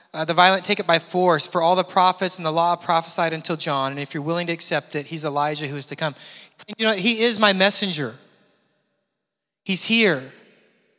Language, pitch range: English, 160-220 Hz